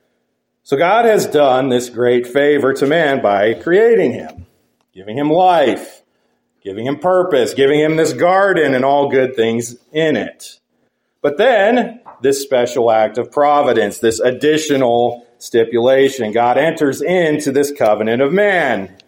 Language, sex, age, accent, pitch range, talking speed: English, male, 40-59, American, 120-180 Hz, 140 wpm